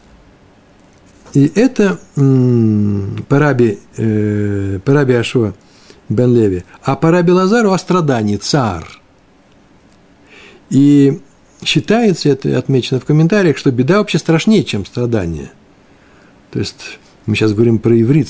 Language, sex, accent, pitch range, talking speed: Russian, male, native, 110-155 Hz, 105 wpm